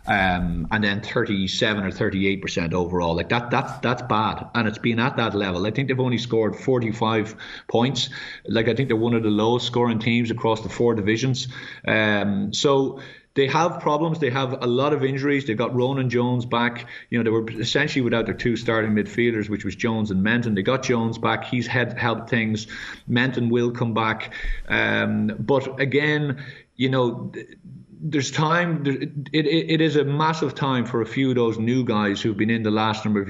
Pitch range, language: 105-130 Hz, English